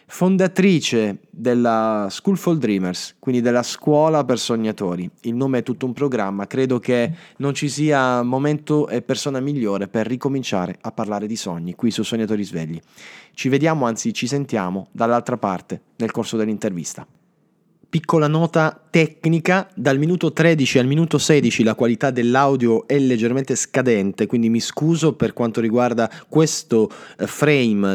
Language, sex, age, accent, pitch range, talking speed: Italian, male, 20-39, native, 110-140 Hz, 145 wpm